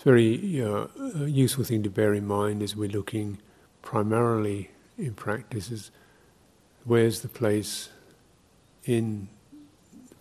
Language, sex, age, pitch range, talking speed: English, male, 50-69, 105-115 Hz, 130 wpm